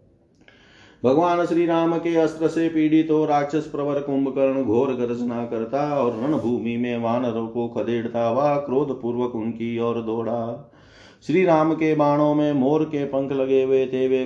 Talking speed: 120 wpm